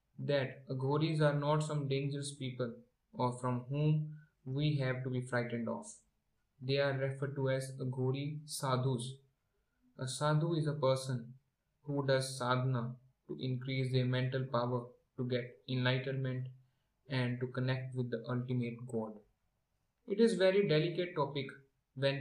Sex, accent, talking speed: male, Indian, 140 wpm